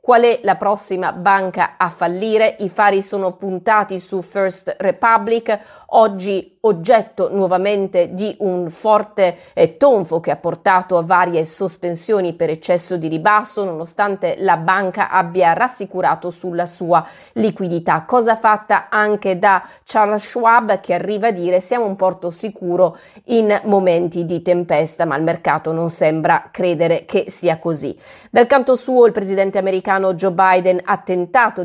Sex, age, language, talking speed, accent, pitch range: female, 30-49, Italian, 145 wpm, native, 175-215 Hz